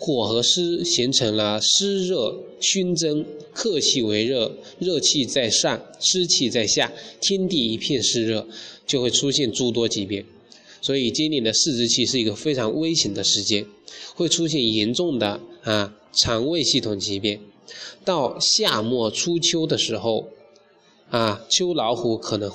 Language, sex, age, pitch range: Chinese, male, 20-39, 105-155 Hz